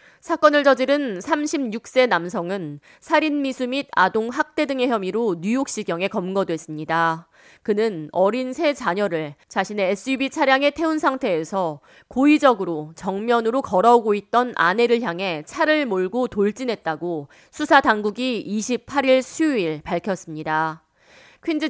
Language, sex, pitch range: Korean, female, 185-270 Hz